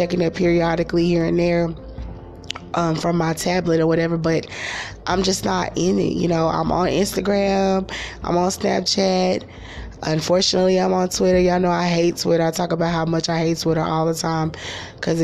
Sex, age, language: female, 20-39, English